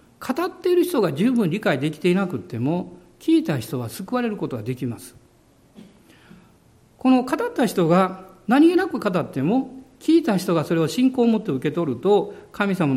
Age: 50-69